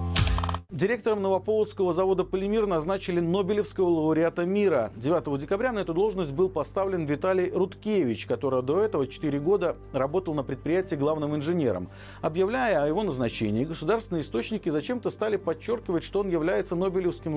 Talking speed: 140 wpm